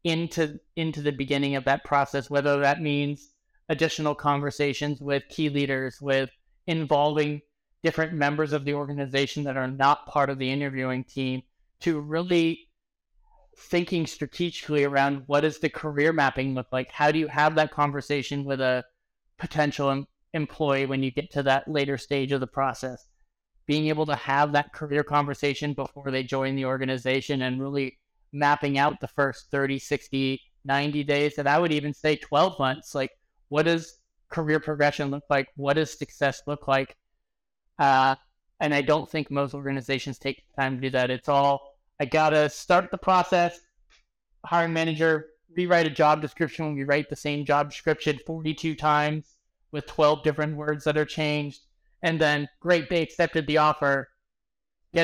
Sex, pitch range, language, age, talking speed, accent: male, 140-155 Hz, English, 30-49, 170 wpm, American